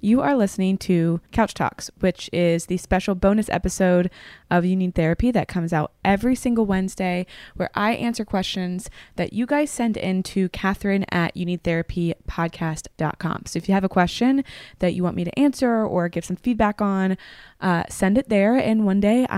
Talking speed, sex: 185 wpm, female